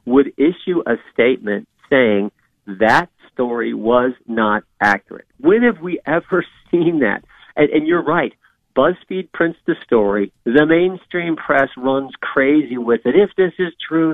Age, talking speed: 50-69, 150 wpm